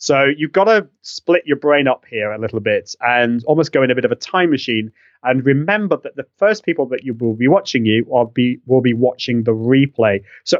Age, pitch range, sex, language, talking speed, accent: 30-49, 115-150 Hz, male, English, 230 wpm, British